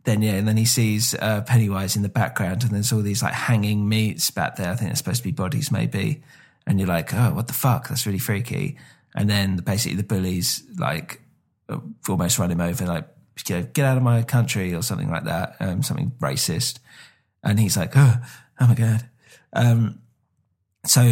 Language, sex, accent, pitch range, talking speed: English, male, British, 100-125 Hz, 200 wpm